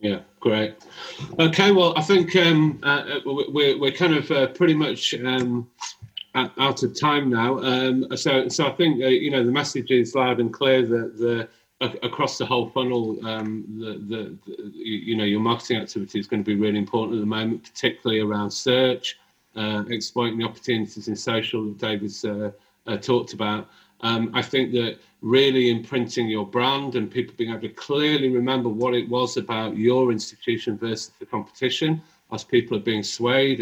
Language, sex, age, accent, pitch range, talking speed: English, male, 30-49, British, 110-130 Hz, 185 wpm